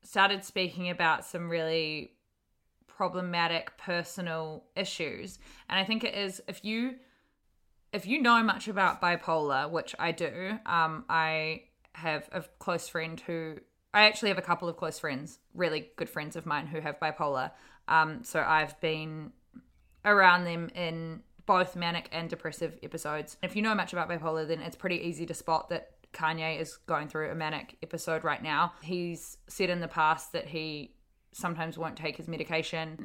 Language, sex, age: English, female, 20-39